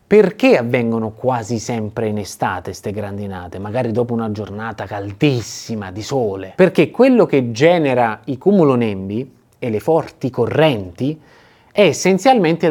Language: Italian